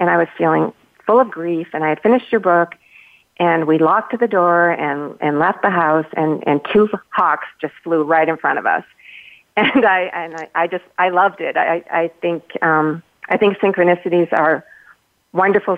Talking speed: 200 wpm